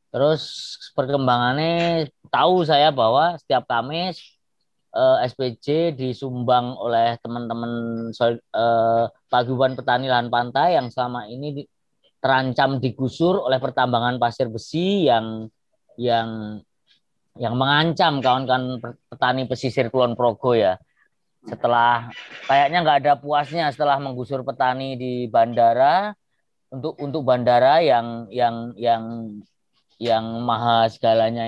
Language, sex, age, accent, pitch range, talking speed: Indonesian, female, 20-39, native, 115-150 Hz, 105 wpm